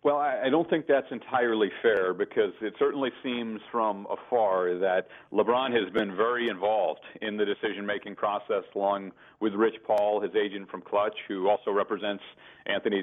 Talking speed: 160 wpm